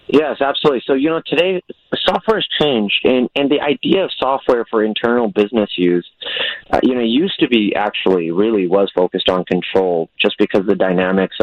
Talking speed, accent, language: 190 wpm, American, English